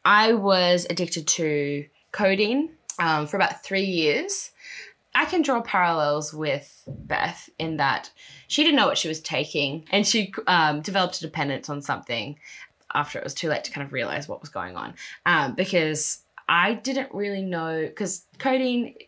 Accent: Australian